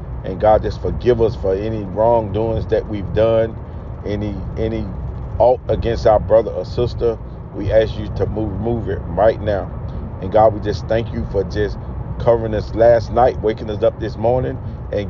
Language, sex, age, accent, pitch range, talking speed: English, male, 40-59, American, 100-120 Hz, 185 wpm